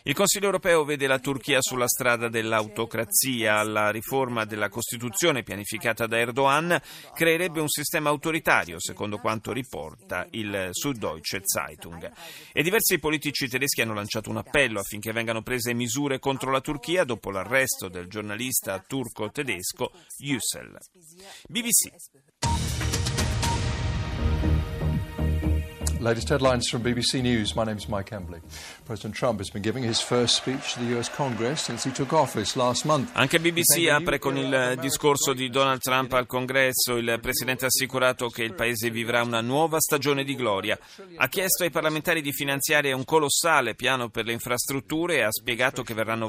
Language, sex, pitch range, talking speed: Italian, male, 110-140 Hz, 115 wpm